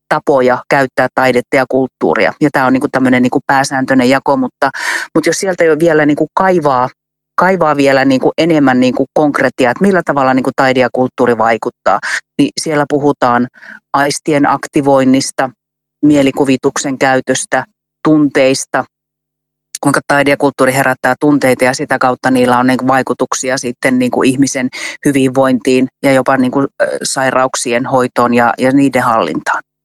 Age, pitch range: 30-49, 125-140 Hz